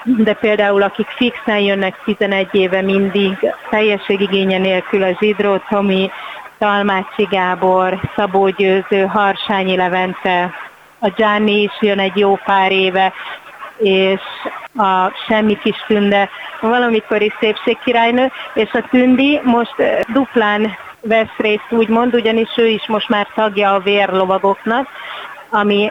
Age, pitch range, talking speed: 30-49, 190-215 Hz, 120 wpm